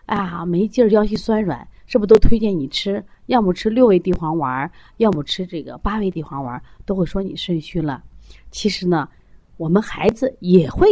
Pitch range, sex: 155-235 Hz, female